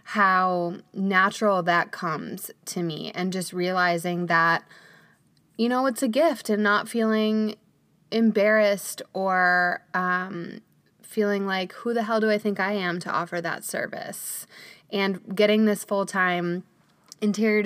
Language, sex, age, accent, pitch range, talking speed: English, female, 20-39, American, 180-220 Hz, 135 wpm